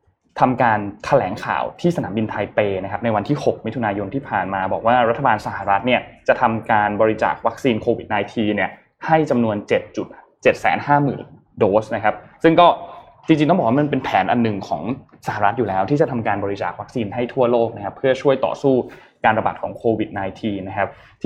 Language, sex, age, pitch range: Thai, male, 20-39, 105-145 Hz